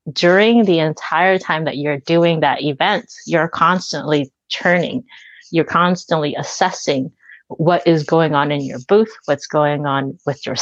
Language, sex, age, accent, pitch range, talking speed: English, female, 30-49, American, 150-180 Hz, 155 wpm